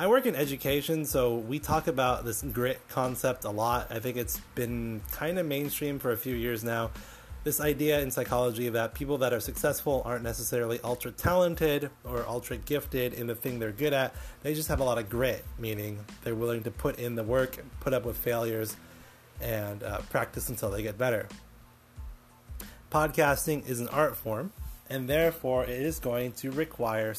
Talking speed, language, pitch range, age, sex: 185 wpm, English, 115-145 Hz, 30-49, male